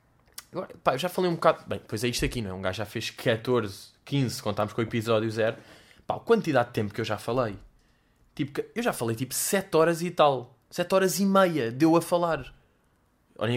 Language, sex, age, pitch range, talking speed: Portuguese, male, 20-39, 115-160 Hz, 210 wpm